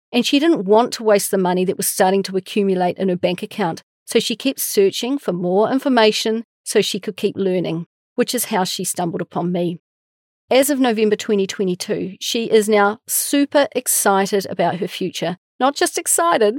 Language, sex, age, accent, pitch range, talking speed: English, female, 40-59, Australian, 190-245 Hz, 185 wpm